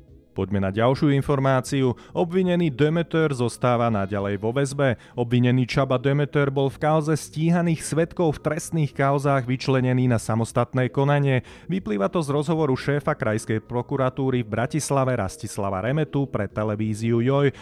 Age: 30-49